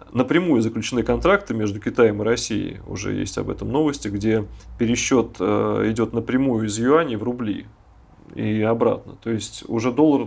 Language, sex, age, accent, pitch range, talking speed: Russian, male, 30-49, native, 115-150 Hz, 150 wpm